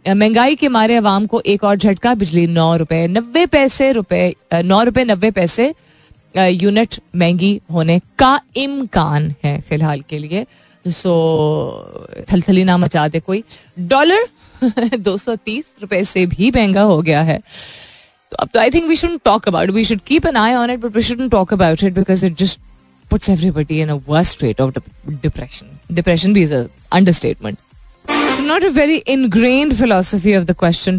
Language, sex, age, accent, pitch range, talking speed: Hindi, female, 20-39, native, 160-215 Hz, 125 wpm